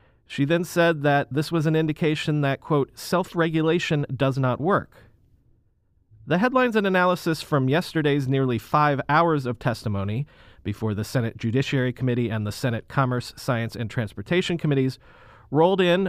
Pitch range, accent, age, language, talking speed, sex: 115-160 Hz, American, 40-59, English, 150 wpm, male